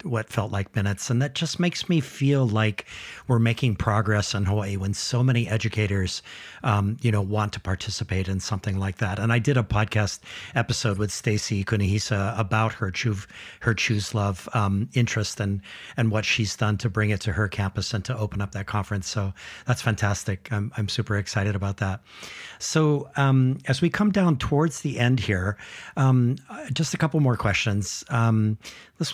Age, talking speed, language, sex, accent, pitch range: 50-69, 185 wpm, English, male, American, 100-125 Hz